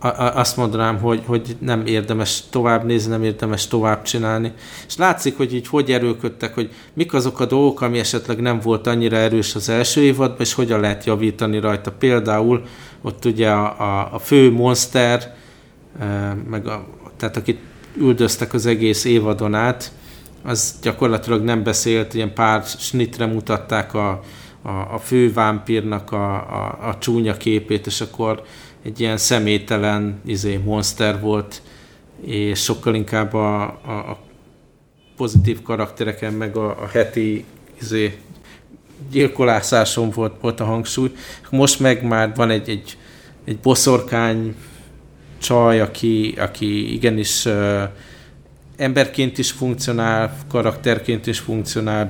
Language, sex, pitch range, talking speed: Hungarian, male, 105-120 Hz, 130 wpm